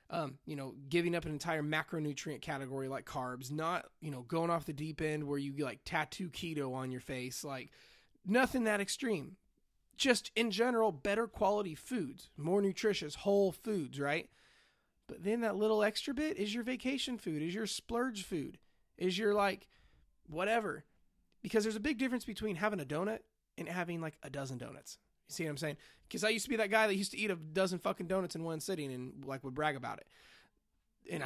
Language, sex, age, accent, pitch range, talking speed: English, male, 20-39, American, 150-205 Hz, 200 wpm